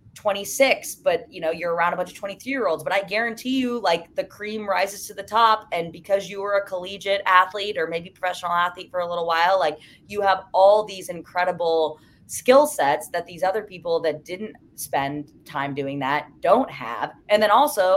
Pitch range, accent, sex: 170-225 Hz, American, female